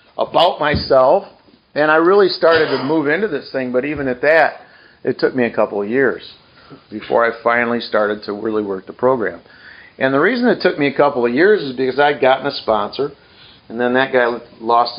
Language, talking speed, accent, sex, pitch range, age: English, 210 wpm, American, male, 115-140 Hz, 50-69